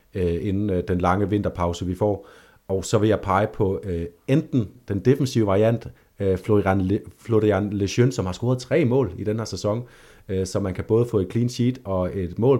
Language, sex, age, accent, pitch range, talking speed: Danish, male, 30-49, native, 95-125 Hz, 195 wpm